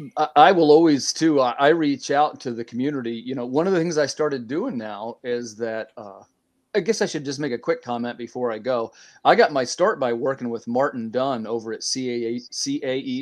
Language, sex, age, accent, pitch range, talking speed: English, male, 40-59, American, 115-140 Hz, 215 wpm